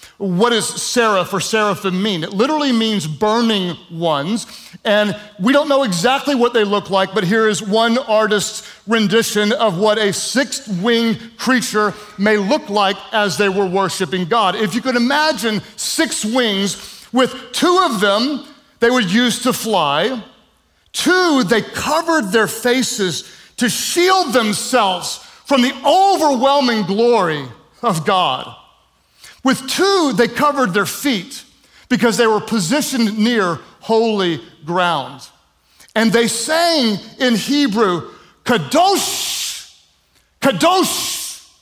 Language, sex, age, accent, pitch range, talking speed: English, male, 40-59, American, 195-250 Hz, 130 wpm